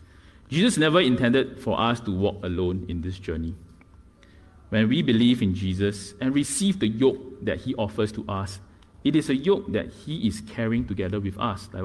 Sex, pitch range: male, 90-120 Hz